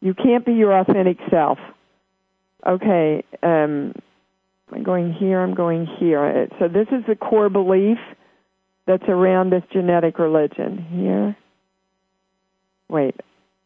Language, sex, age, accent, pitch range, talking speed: English, female, 50-69, American, 175-200 Hz, 120 wpm